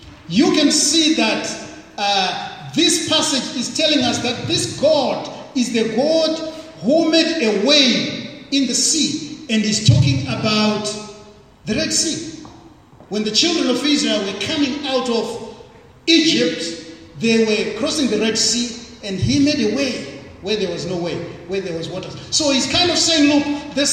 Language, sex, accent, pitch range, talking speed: English, male, South African, 210-295 Hz, 170 wpm